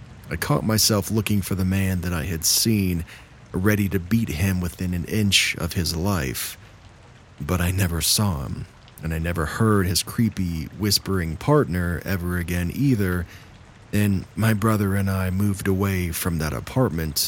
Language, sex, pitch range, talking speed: English, male, 90-115 Hz, 165 wpm